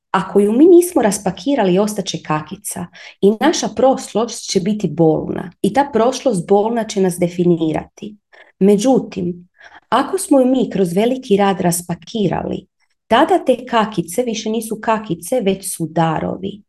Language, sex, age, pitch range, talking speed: Croatian, female, 30-49, 175-240 Hz, 135 wpm